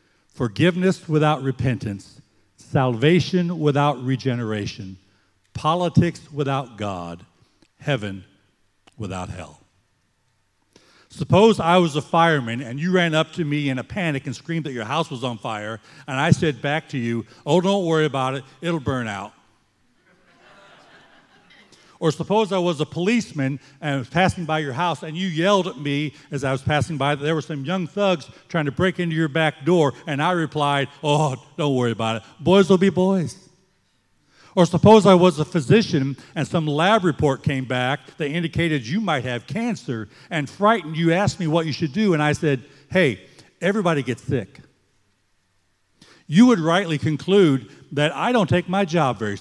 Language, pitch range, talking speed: English, 130-175 Hz, 170 wpm